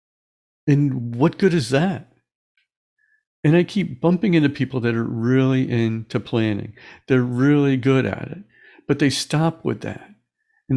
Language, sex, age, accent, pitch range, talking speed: English, male, 50-69, American, 120-170 Hz, 150 wpm